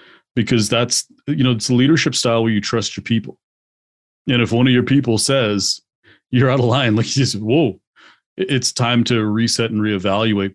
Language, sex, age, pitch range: English, male, 30-49, 105-120 Hz